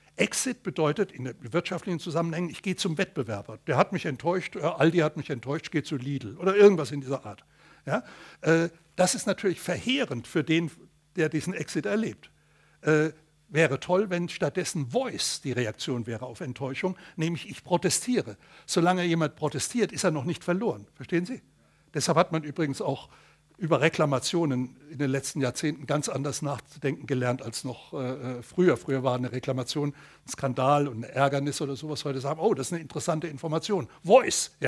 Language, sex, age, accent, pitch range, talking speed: German, male, 60-79, German, 140-175 Hz, 175 wpm